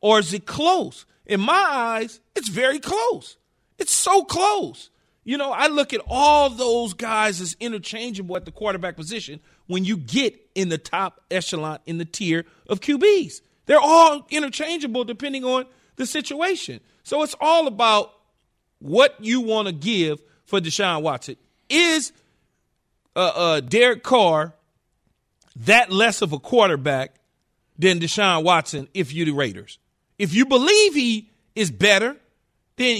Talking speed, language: 150 wpm, English